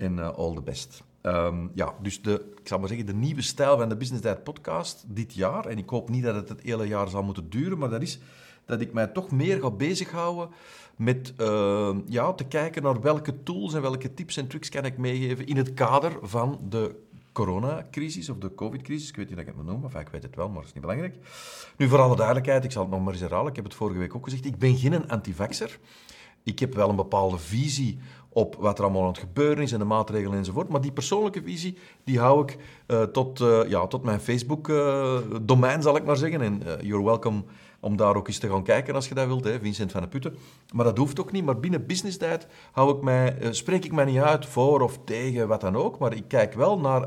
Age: 50-69